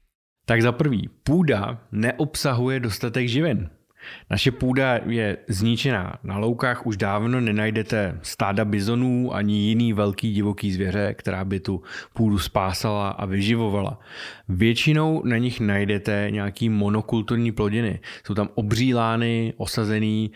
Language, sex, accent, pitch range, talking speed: Czech, male, native, 100-120 Hz, 120 wpm